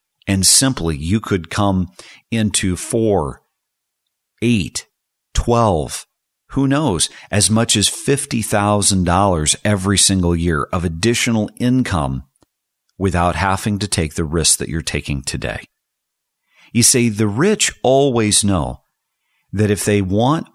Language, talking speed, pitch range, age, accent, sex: English, 120 wpm, 85-110 Hz, 50-69, American, male